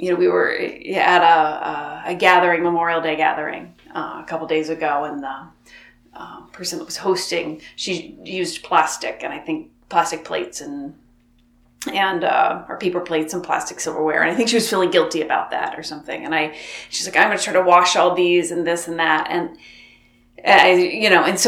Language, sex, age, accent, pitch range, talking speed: English, female, 30-49, American, 160-230 Hz, 205 wpm